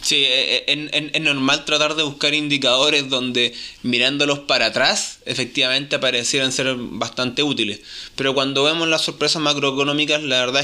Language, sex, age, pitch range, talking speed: Spanish, male, 20-39, 120-140 Hz, 135 wpm